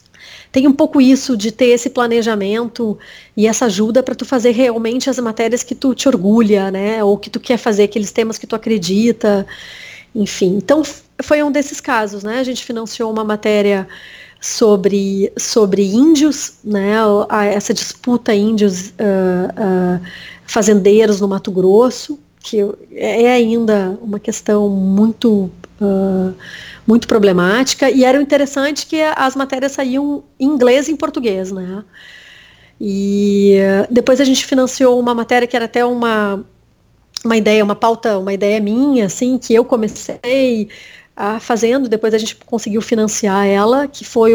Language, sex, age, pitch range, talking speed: Portuguese, female, 30-49, 205-245 Hz, 145 wpm